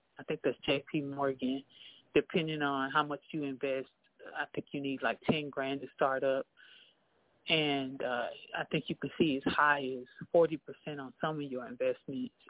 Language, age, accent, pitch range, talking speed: English, 30-49, American, 140-180 Hz, 180 wpm